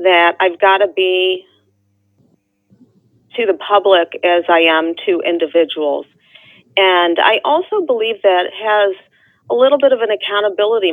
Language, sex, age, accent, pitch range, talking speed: English, female, 40-59, American, 160-195 Hz, 145 wpm